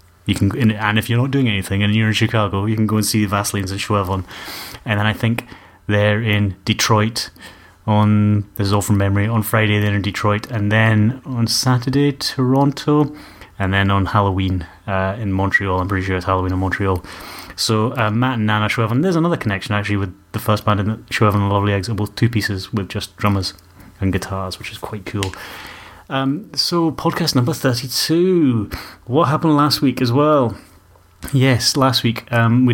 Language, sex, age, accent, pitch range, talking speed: English, male, 30-49, British, 100-115 Hz, 195 wpm